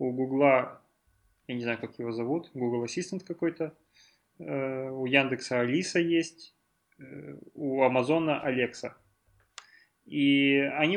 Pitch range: 125-145 Hz